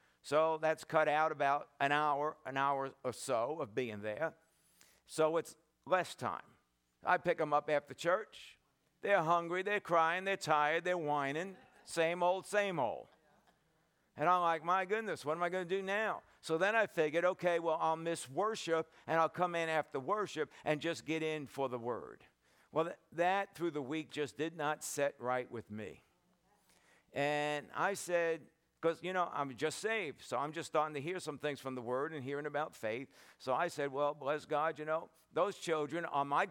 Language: English